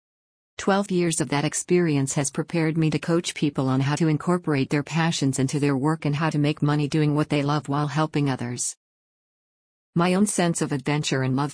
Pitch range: 140-165 Hz